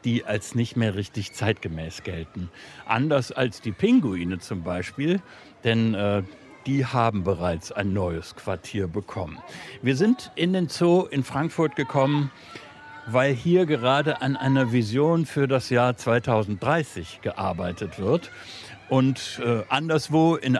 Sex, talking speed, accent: male, 135 wpm, German